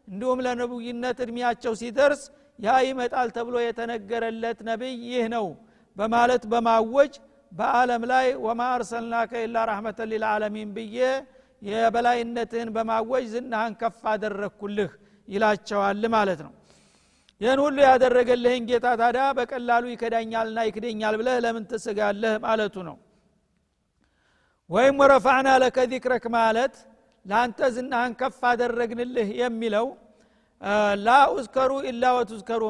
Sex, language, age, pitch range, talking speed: male, Amharic, 50-69, 220-250 Hz, 70 wpm